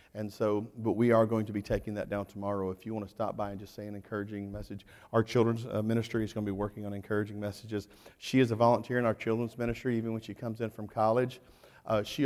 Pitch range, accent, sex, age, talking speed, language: 105-120 Hz, American, male, 40-59, 255 wpm, English